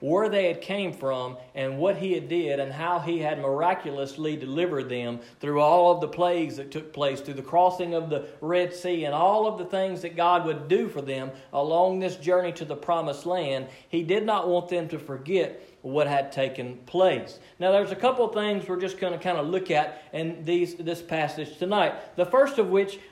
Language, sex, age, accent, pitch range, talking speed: English, male, 40-59, American, 145-195 Hz, 215 wpm